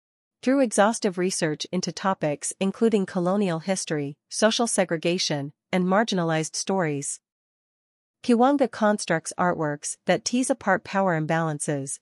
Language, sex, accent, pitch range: English, female, American, 160-195 Hz